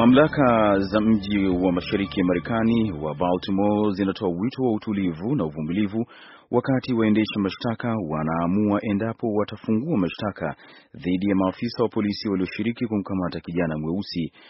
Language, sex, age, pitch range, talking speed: Swahili, male, 30-49, 90-110 Hz, 125 wpm